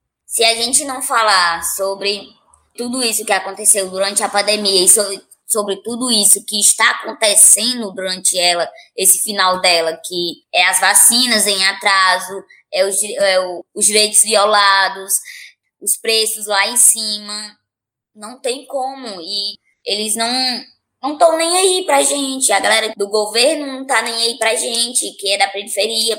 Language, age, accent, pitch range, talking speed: Portuguese, 20-39, Brazilian, 200-240 Hz, 160 wpm